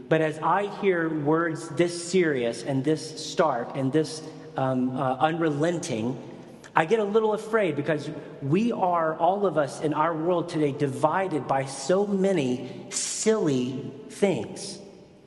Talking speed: 140 wpm